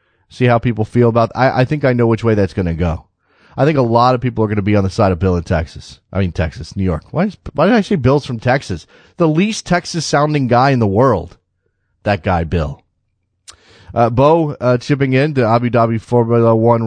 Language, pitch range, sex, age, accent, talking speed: English, 105-135 Hz, male, 30-49, American, 235 wpm